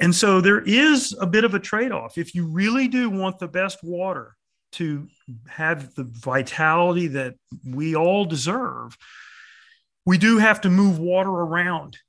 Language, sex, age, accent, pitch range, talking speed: English, male, 40-59, American, 135-180 Hz, 160 wpm